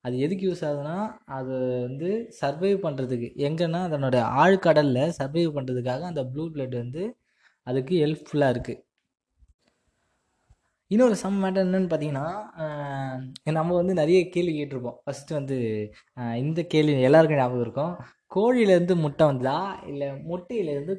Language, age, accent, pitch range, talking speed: Tamil, 20-39, native, 130-180 Hz, 120 wpm